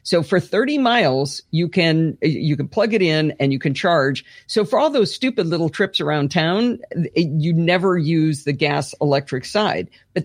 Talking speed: 185 wpm